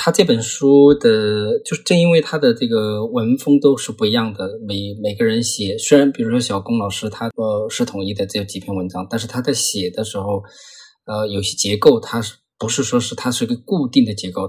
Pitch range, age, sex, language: 100-145 Hz, 20-39, male, Chinese